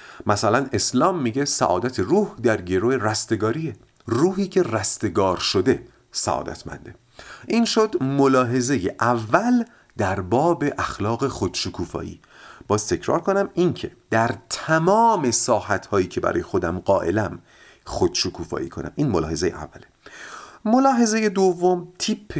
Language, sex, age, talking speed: Persian, male, 40-59, 115 wpm